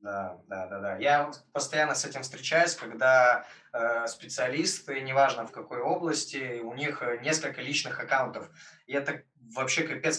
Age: 20-39